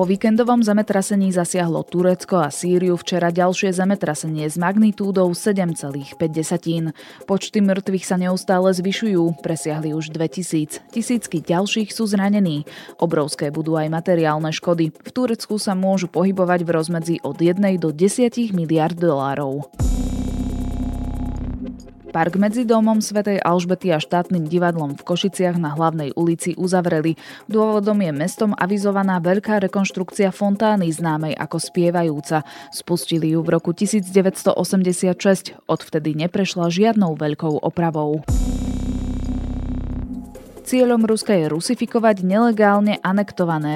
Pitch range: 155-195 Hz